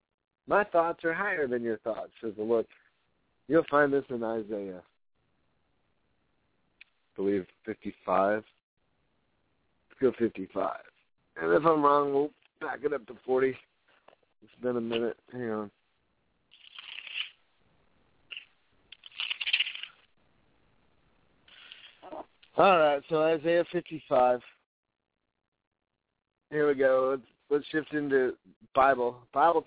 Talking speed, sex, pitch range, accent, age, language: 105 wpm, male, 110-150 Hz, American, 50-69, English